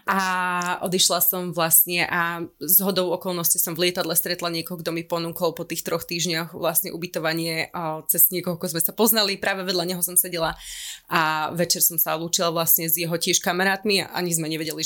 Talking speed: 185 wpm